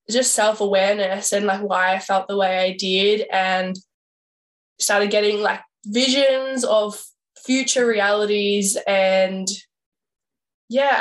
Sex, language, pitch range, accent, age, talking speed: female, English, 190-215 Hz, Australian, 10-29, 115 wpm